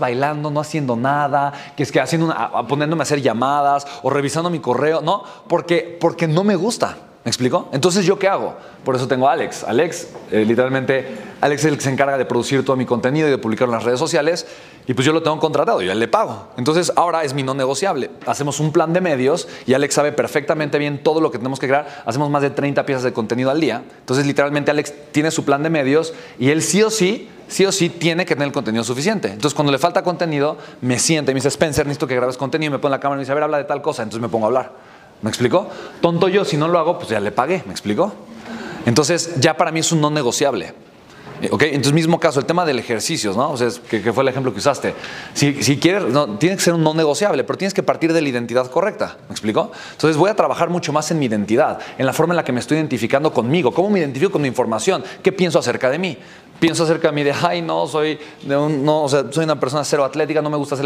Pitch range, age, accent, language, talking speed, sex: 135-165 Hz, 30-49, Mexican, Spanish, 260 wpm, male